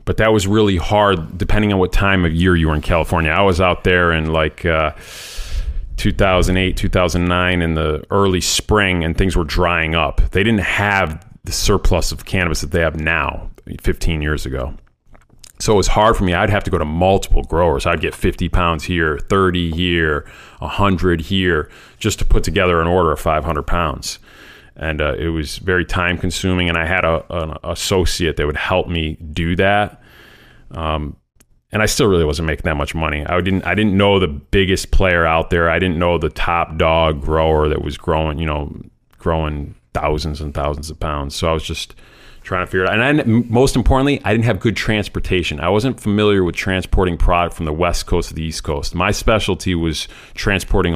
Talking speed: 200 wpm